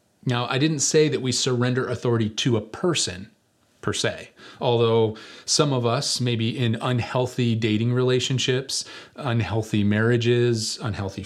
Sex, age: male, 30-49